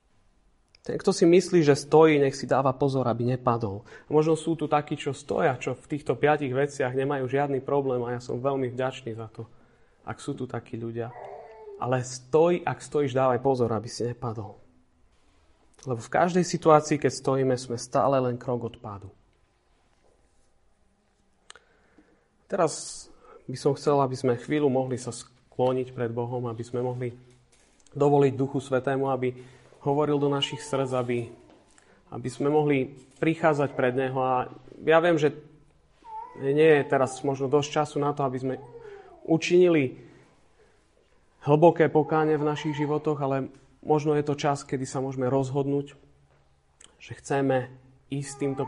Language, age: Slovak, 30-49